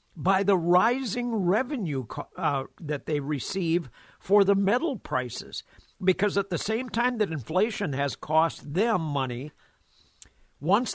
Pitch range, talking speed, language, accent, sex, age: 145-195 Hz, 130 wpm, English, American, male, 60-79